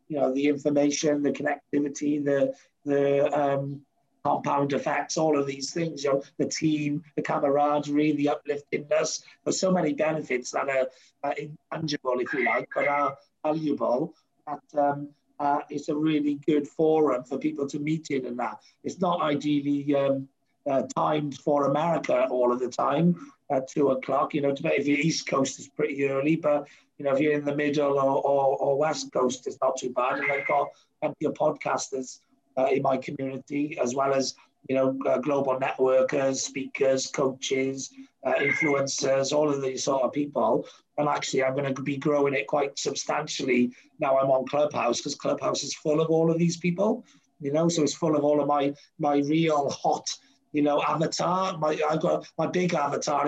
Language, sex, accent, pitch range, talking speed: English, male, British, 135-155 Hz, 185 wpm